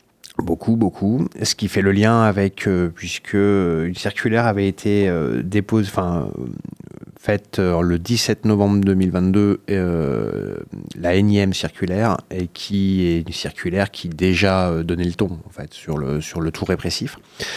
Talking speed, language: 165 wpm, French